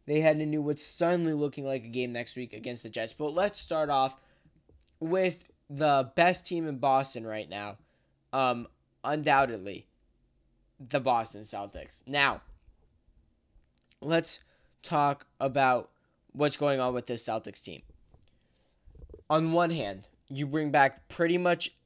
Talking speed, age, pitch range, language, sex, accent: 140 wpm, 10-29, 115-145 Hz, English, male, American